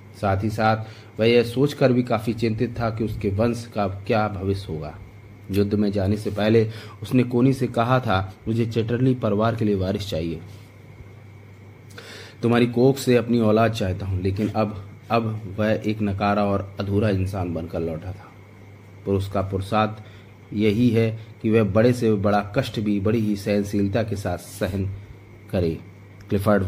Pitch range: 100-115 Hz